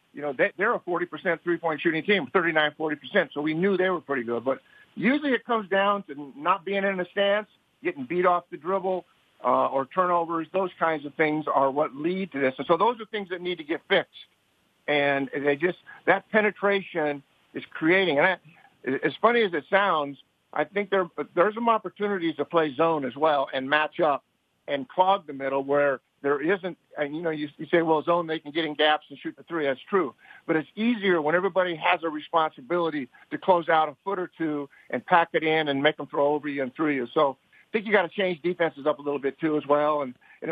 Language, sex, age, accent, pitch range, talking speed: English, male, 50-69, American, 150-185 Hz, 230 wpm